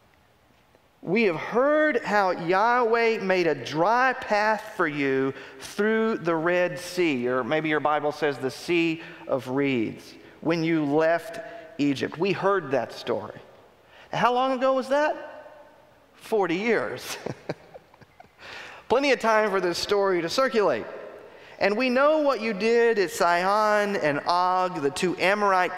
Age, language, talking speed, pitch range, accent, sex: 40-59, English, 140 wpm, 155-205 Hz, American, male